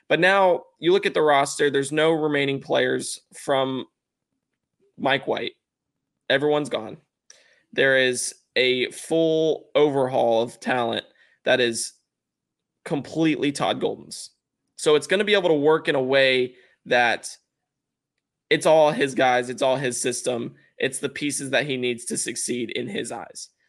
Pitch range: 125-150 Hz